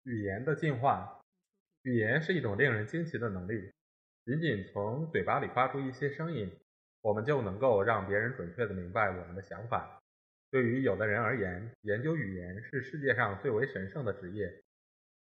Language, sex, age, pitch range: Chinese, male, 20-39, 95-145 Hz